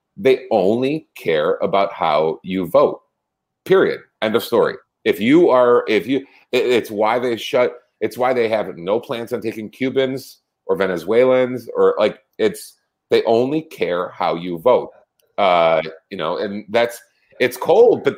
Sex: male